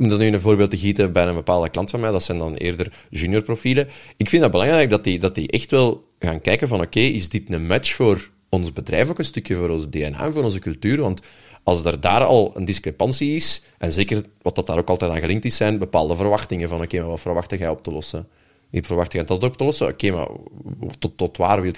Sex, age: male, 30-49